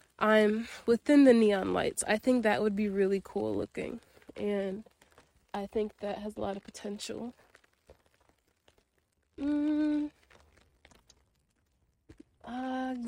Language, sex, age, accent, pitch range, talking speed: English, female, 20-39, American, 205-270 Hz, 105 wpm